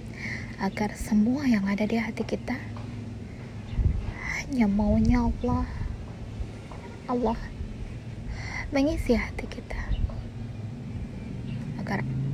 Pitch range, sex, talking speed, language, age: 105-135 Hz, female, 75 wpm, Indonesian, 20-39